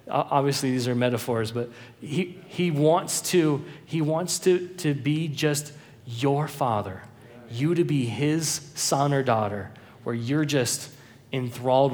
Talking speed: 140 wpm